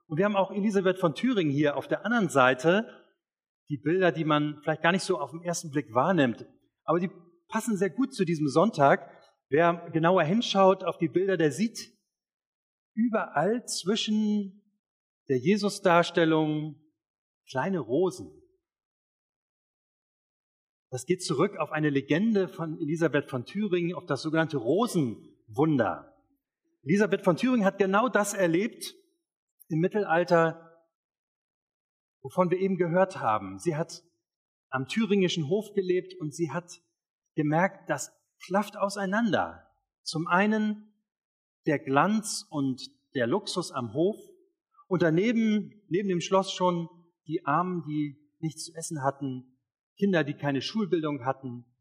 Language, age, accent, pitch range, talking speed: German, 40-59, German, 155-200 Hz, 135 wpm